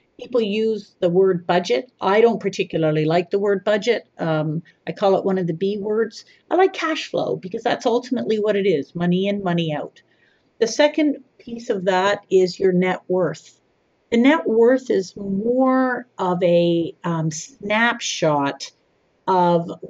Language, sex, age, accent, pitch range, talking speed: English, female, 50-69, American, 170-225 Hz, 165 wpm